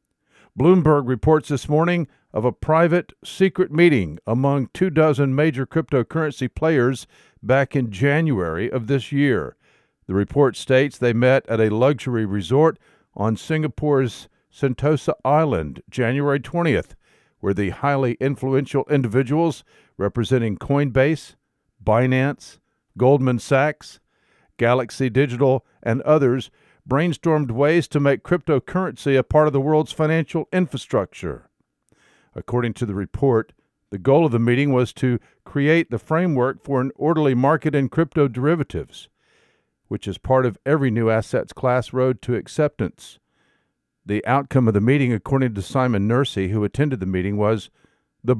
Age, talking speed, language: 50-69, 135 wpm, English